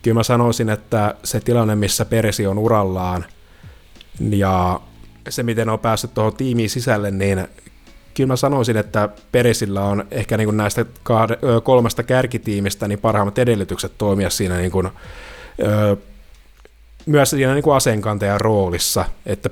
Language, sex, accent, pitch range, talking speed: Finnish, male, native, 100-120 Hz, 130 wpm